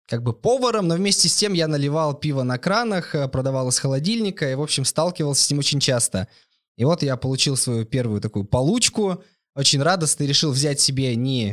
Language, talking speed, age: Russian, 195 wpm, 20-39